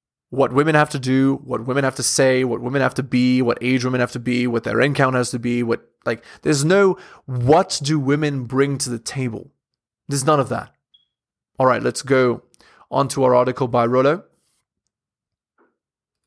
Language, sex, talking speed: English, male, 190 wpm